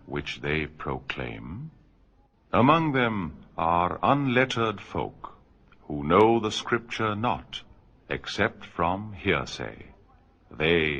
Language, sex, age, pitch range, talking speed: Urdu, male, 50-69, 75-110 Hz, 95 wpm